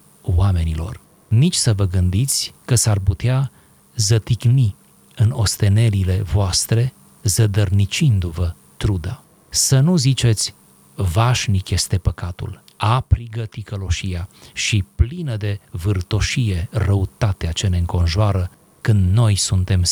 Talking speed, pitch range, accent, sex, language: 100 wpm, 95-120 Hz, native, male, Romanian